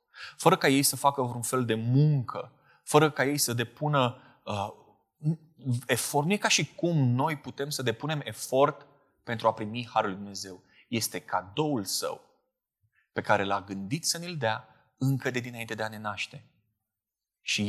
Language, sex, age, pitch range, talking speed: Romanian, male, 20-39, 115-145 Hz, 160 wpm